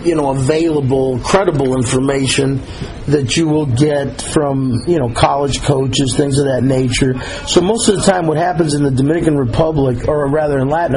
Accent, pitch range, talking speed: American, 130-155 Hz, 180 wpm